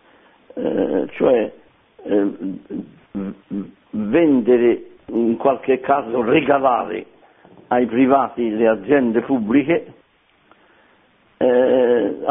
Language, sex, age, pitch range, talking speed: Italian, male, 60-79, 120-145 Hz, 70 wpm